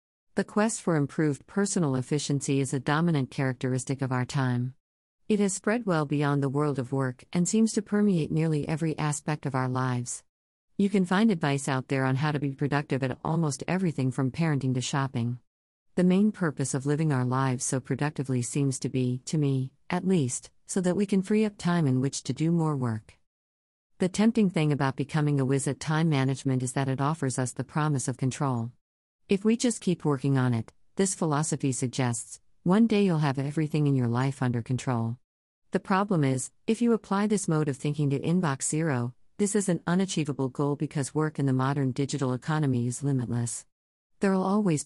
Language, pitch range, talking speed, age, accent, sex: English, 130-160 Hz, 195 wpm, 50-69, American, female